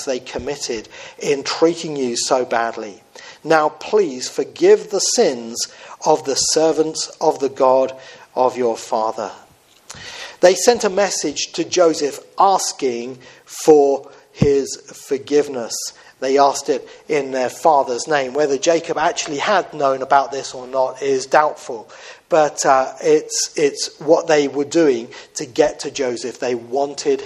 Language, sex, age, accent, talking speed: English, male, 40-59, British, 140 wpm